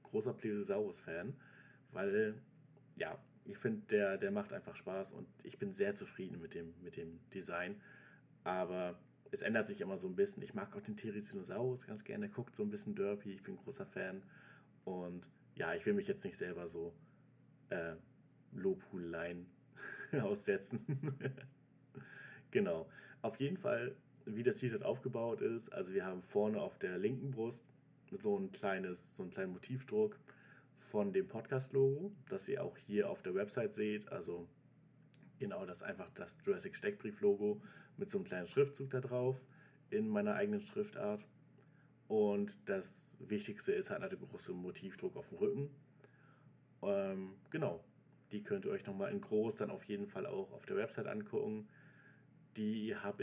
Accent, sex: German, male